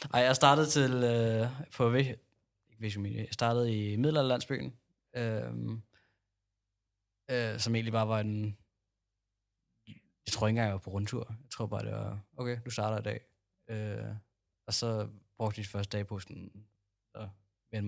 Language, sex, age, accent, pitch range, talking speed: Danish, male, 20-39, native, 100-115 Hz, 155 wpm